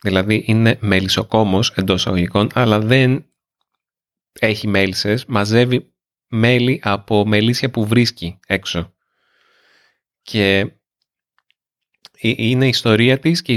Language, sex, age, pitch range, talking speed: Greek, male, 30-49, 100-120 Hz, 95 wpm